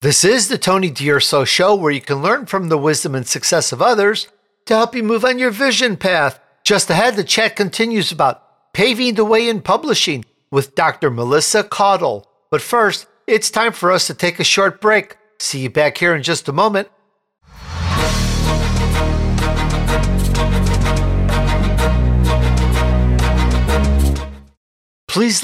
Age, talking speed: 50-69, 140 wpm